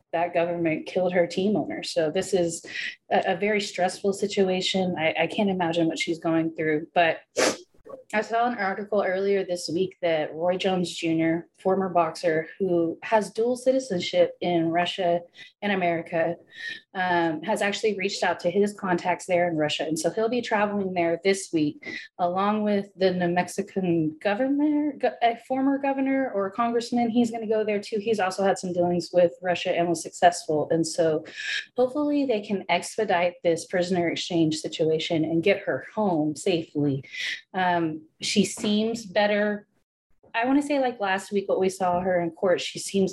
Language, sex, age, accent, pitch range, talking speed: English, female, 30-49, American, 170-215 Hz, 175 wpm